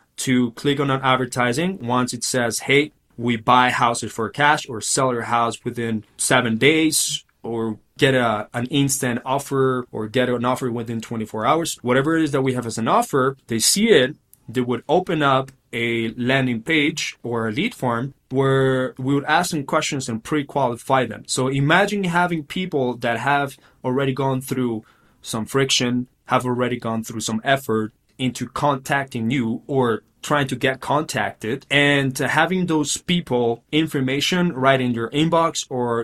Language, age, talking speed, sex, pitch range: English, 20-39, 170 wpm, male, 115-140 Hz